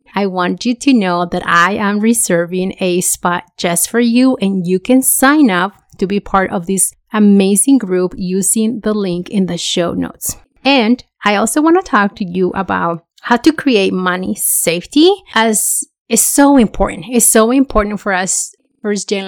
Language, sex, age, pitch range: English, female, 30-49, 185-235 Hz